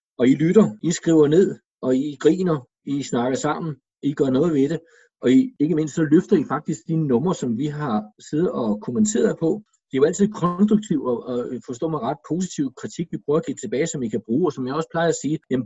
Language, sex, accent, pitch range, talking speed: Danish, male, native, 130-180 Hz, 240 wpm